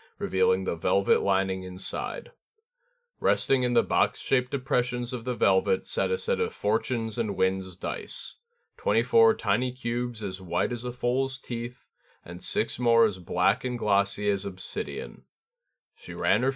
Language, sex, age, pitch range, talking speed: English, male, 30-49, 95-135 Hz, 150 wpm